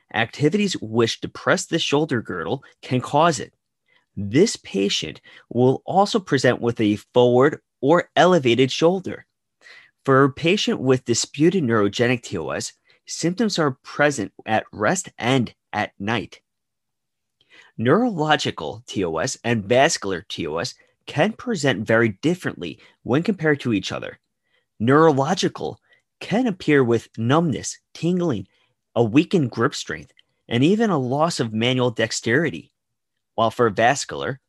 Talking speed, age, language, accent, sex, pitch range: 120 wpm, 30-49, English, American, male, 115-165 Hz